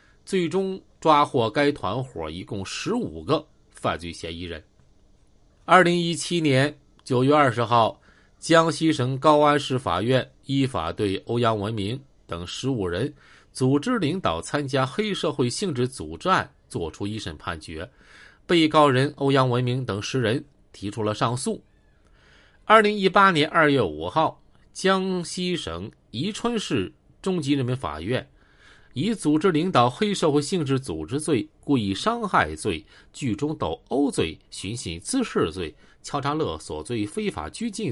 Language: Chinese